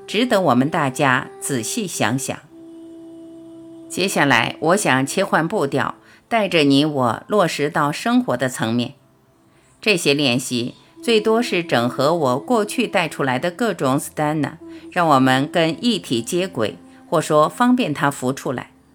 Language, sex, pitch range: Chinese, female, 135-205 Hz